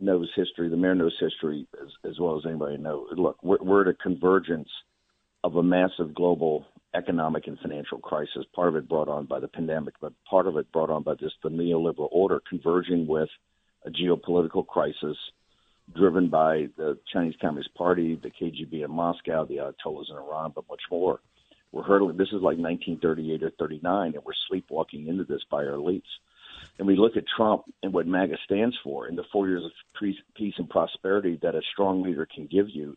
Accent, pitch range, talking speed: American, 80-95 Hz, 200 wpm